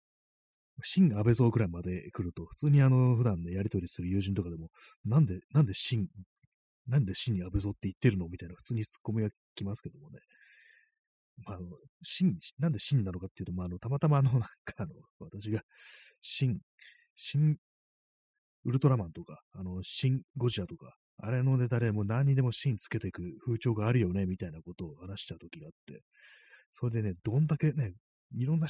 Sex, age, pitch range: male, 30-49, 95-135 Hz